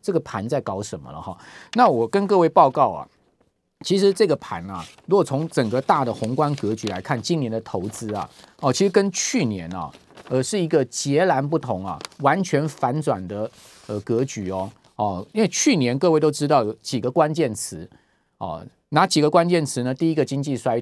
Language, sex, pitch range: Chinese, male, 120-165 Hz